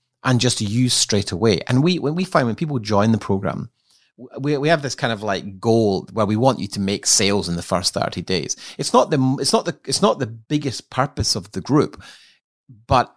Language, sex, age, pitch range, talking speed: English, male, 30-49, 105-135 Hz, 230 wpm